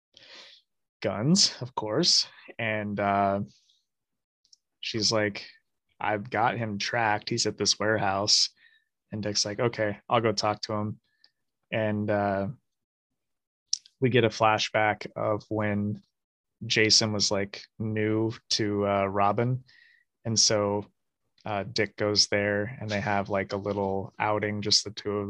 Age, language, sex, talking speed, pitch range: 20-39, English, male, 135 wpm, 105-115 Hz